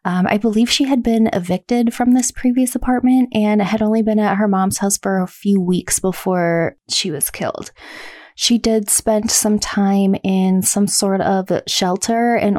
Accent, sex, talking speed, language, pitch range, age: American, female, 180 wpm, English, 190-225 Hz, 20-39